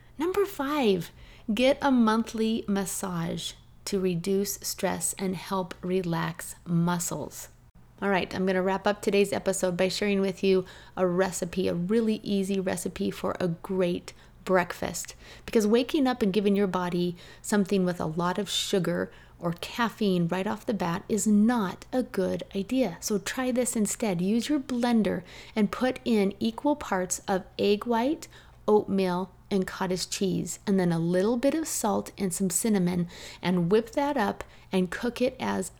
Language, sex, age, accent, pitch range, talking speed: English, female, 30-49, American, 185-230 Hz, 165 wpm